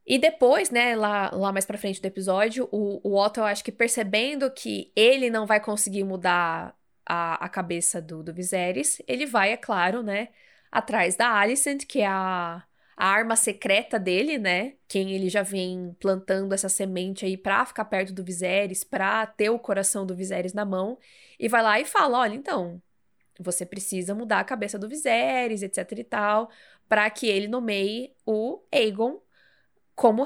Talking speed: 180 wpm